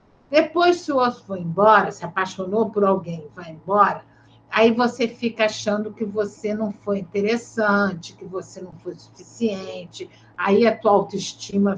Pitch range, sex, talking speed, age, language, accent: 190-250 Hz, female, 160 wpm, 60-79, Portuguese, Brazilian